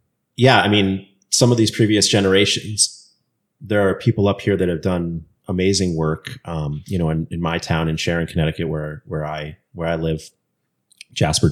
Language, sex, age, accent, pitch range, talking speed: English, male, 30-49, American, 75-95 Hz, 180 wpm